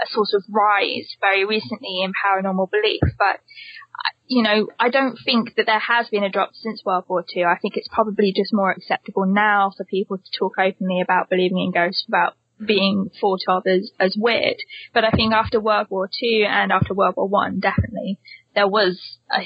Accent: British